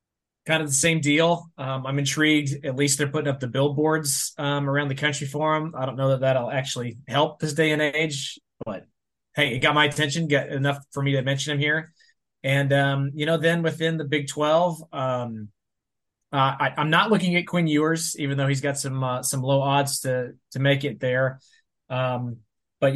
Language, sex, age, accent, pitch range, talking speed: English, male, 20-39, American, 130-155 Hz, 210 wpm